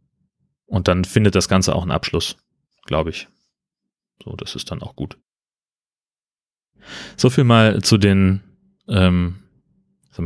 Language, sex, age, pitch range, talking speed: German, male, 30-49, 90-105 Hz, 135 wpm